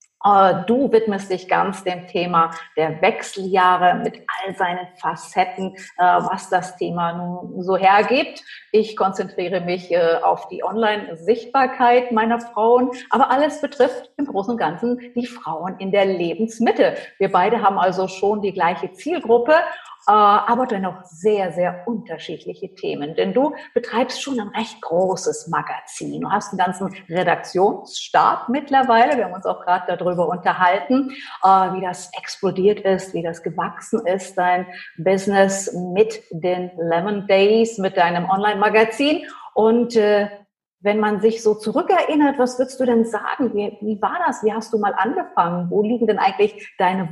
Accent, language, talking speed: German, German, 150 wpm